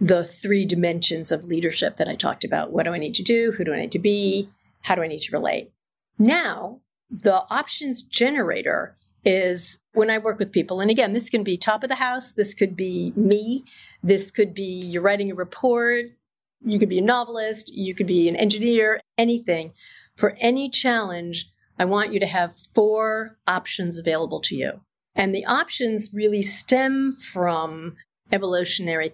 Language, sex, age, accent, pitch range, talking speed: English, female, 40-59, American, 175-220 Hz, 180 wpm